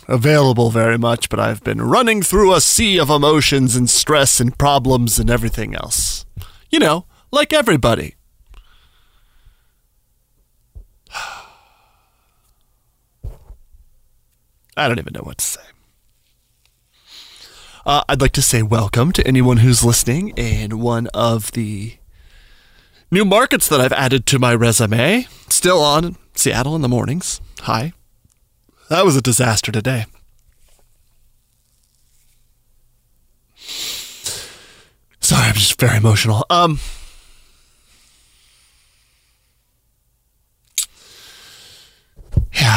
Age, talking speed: 30-49, 100 wpm